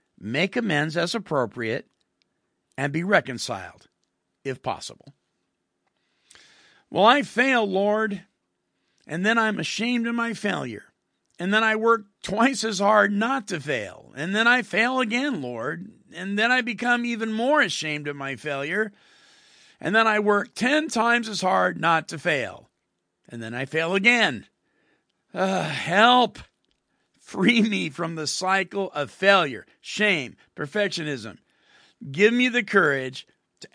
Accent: American